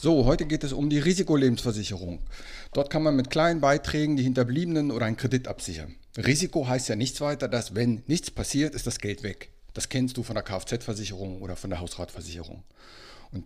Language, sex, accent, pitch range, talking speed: German, male, German, 105-135 Hz, 190 wpm